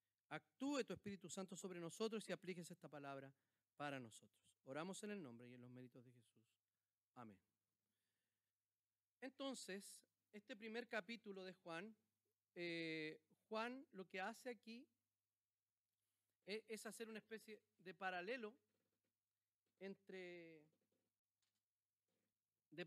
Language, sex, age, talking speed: Spanish, male, 40-59, 115 wpm